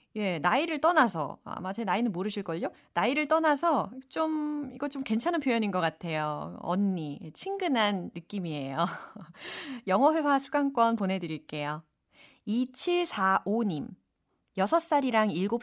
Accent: native